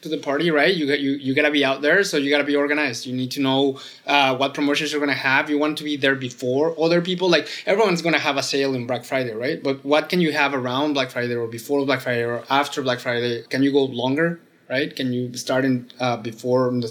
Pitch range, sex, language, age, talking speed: 125-150 Hz, male, English, 20-39, 275 wpm